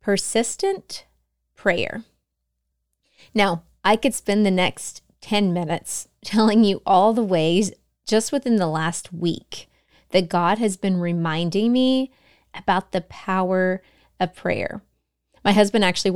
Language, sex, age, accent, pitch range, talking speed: English, female, 30-49, American, 175-215 Hz, 125 wpm